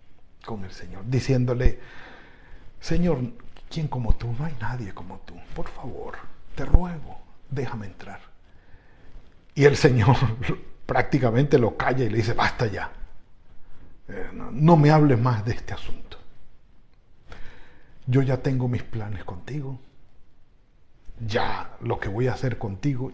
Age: 60-79